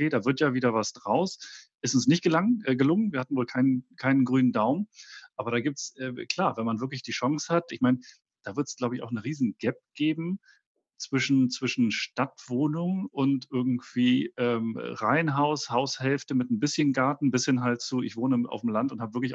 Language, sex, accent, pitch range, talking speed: German, male, German, 120-145 Hz, 210 wpm